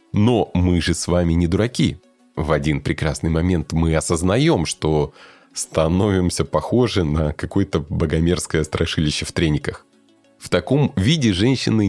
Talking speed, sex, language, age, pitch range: 130 wpm, male, Russian, 30-49, 80-100 Hz